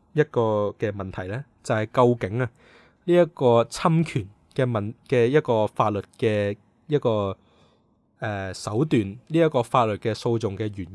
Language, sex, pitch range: Chinese, male, 110-140 Hz